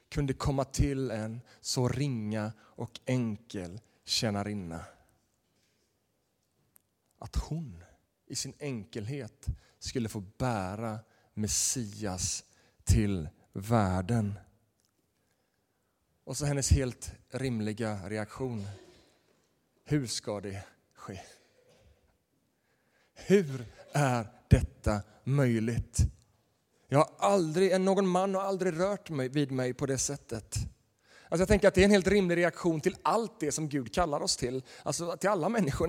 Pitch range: 110-165 Hz